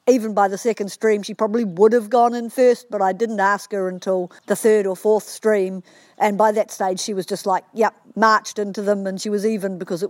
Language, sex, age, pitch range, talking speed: English, female, 50-69, 190-220 Hz, 245 wpm